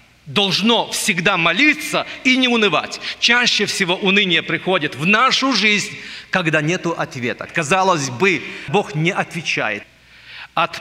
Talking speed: 120 wpm